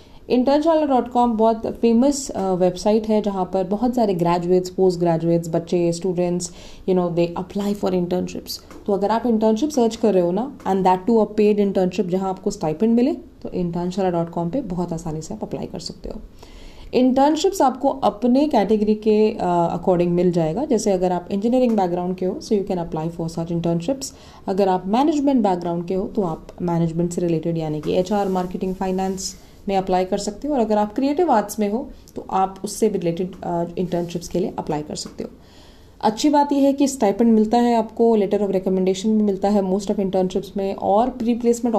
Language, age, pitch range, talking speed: Hindi, 20-39, 180-230 Hz, 190 wpm